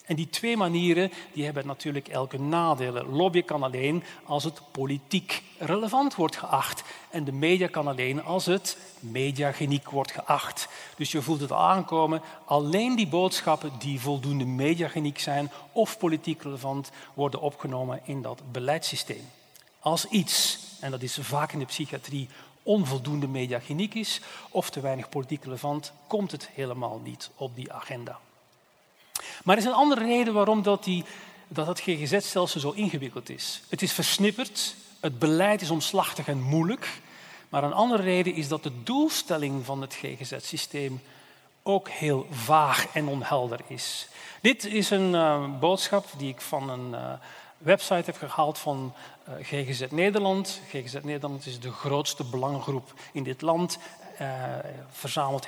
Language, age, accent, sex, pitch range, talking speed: Dutch, 40-59, Dutch, male, 140-185 Hz, 150 wpm